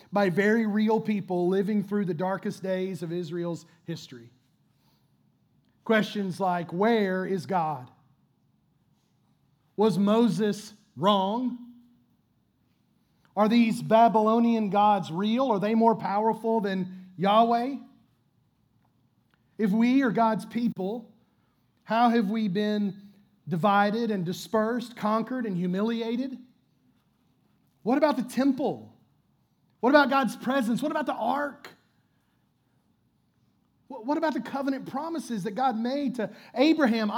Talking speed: 110 wpm